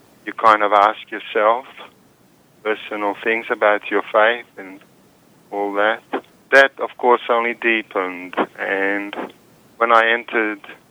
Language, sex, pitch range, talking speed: English, male, 100-120 Hz, 120 wpm